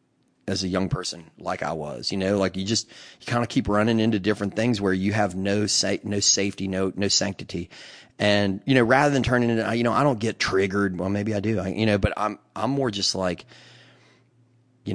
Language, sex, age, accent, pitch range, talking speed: English, male, 30-49, American, 90-105 Hz, 230 wpm